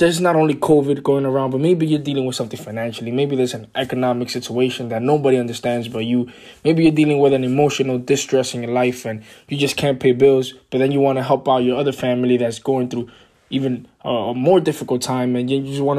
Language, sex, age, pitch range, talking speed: English, male, 20-39, 130-160 Hz, 230 wpm